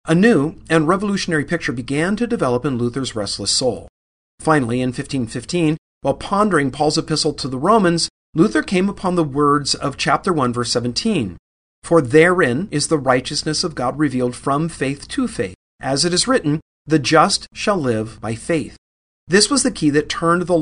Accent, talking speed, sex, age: American, 180 wpm, male, 40-59